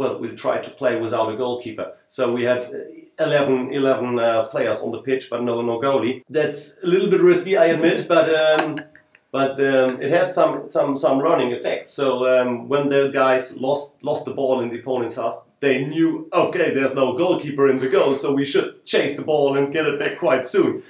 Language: English